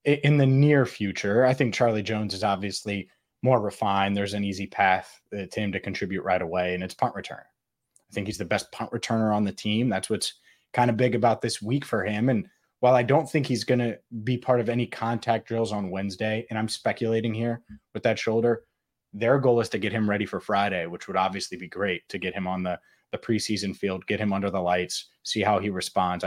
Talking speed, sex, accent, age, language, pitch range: 230 wpm, male, American, 20-39, English, 100-120 Hz